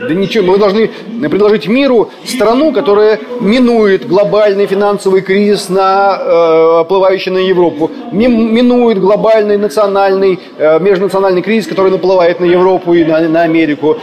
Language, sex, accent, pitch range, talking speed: Russian, male, native, 190-245 Hz, 135 wpm